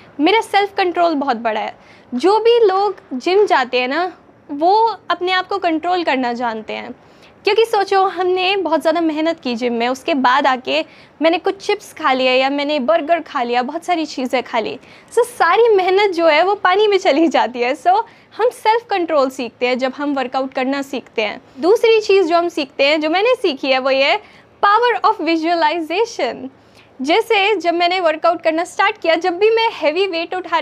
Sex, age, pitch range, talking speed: female, 10-29, 285-385 Hz, 195 wpm